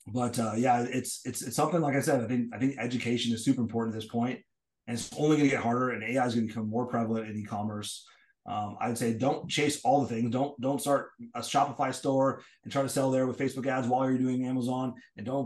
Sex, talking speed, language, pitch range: male, 250 wpm, Hebrew, 115-130 Hz